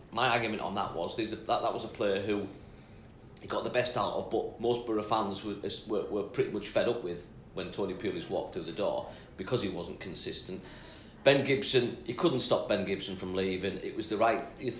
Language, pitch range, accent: English, 100-125 Hz, British